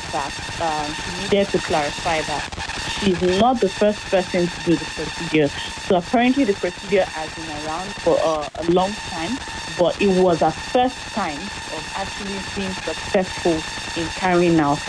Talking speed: 165 wpm